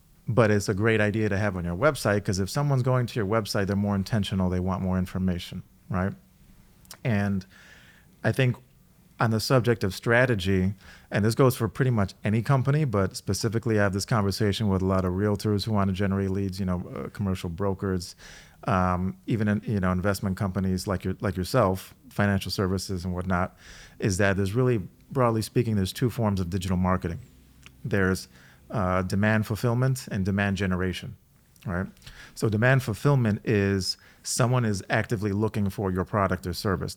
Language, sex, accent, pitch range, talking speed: English, male, American, 95-110 Hz, 175 wpm